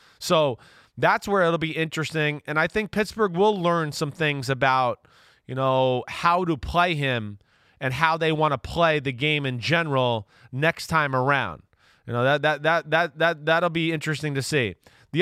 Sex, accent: male, American